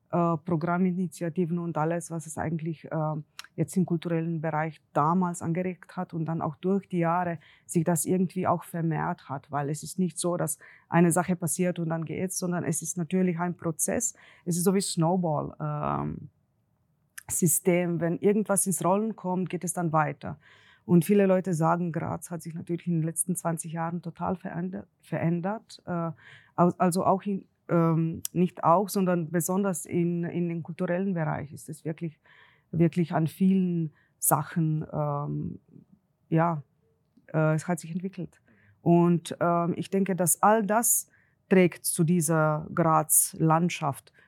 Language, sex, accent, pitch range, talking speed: German, female, German, 160-180 Hz, 155 wpm